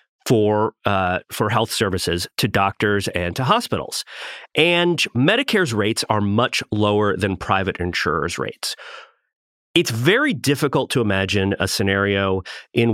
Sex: male